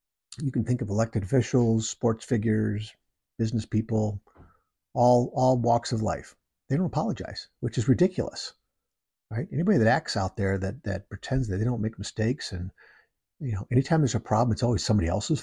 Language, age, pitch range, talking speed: English, 50-69, 105-130 Hz, 180 wpm